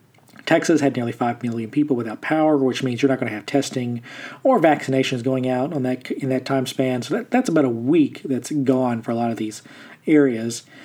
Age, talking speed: 40-59, 220 wpm